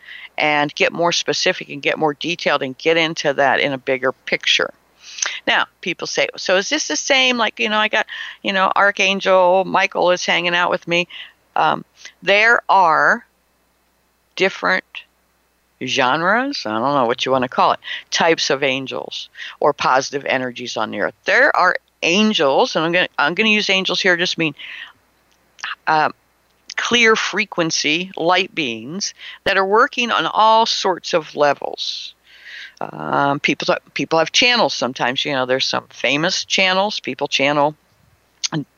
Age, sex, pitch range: 60-79, female, 140-195 Hz